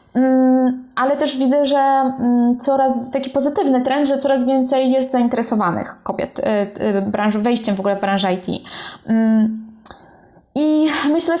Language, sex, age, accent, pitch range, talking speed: Polish, female, 20-39, native, 210-255 Hz, 120 wpm